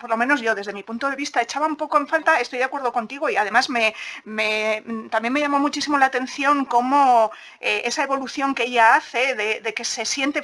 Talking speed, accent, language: 220 wpm, Spanish, Spanish